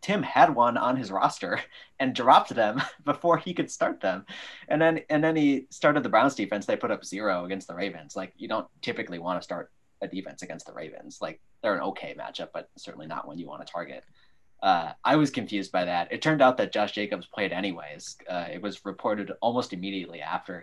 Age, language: 20-39, English